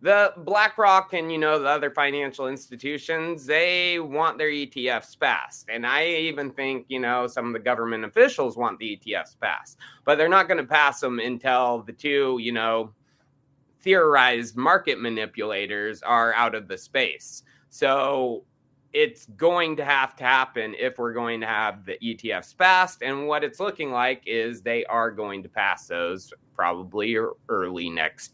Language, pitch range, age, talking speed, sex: English, 115-155 Hz, 30-49, 165 wpm, male